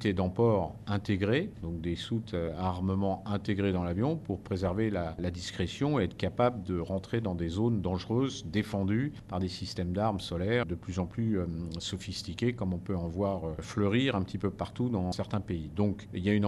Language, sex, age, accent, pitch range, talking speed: French, male, 50-69, French, 95-120 Hz, 205 wpm